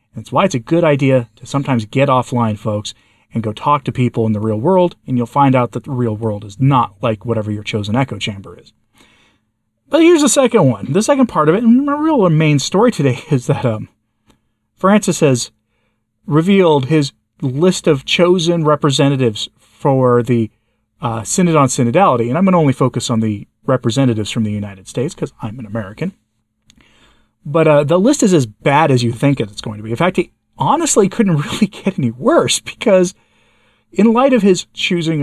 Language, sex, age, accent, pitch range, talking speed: English, male, 30-49, American, 115-160 Hz, 195 wpm